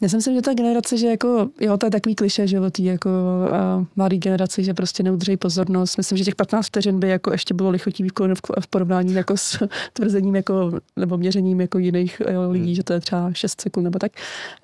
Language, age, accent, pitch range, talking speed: Czech, 30-49, native, 180-195 Hz, 220 wpm